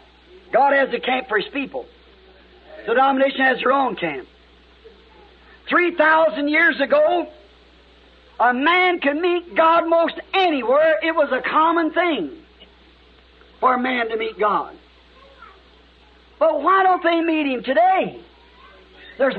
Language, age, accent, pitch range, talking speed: English, 50-69, American, 235-340 Hz, 135 wpm